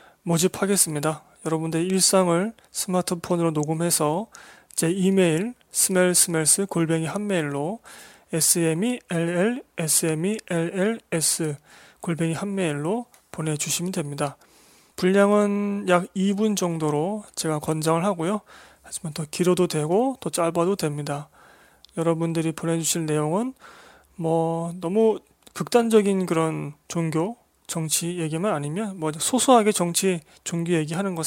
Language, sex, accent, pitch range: Korean, male, native, 160-190 Hz